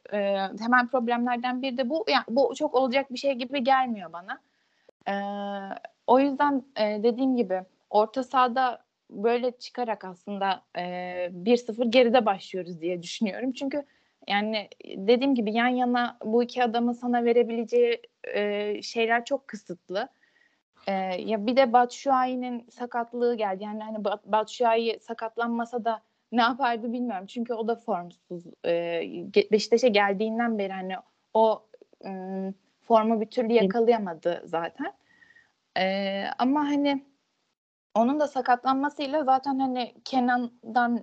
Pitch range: 205-260 Hz